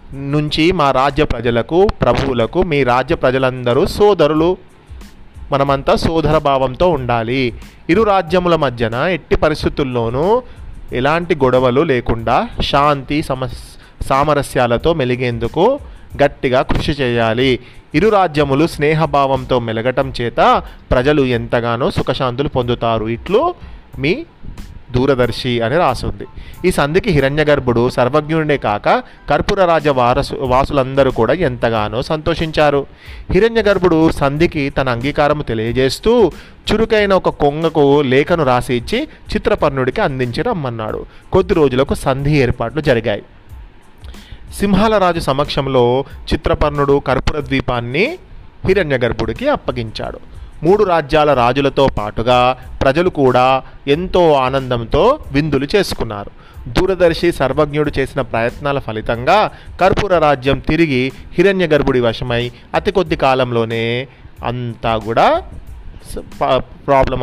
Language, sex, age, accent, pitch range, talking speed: Telugu, male, 30-49, native, 125-160 Hz, 95 wpm